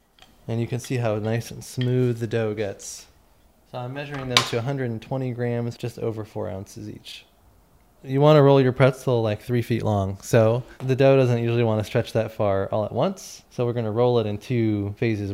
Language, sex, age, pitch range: English, male, 20-39, 105-125 Hz